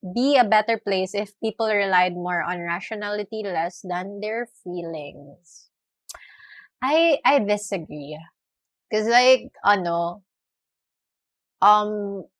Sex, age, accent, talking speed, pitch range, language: female, 20-39, native, 105 wpm, 180-235 Hz, Filipino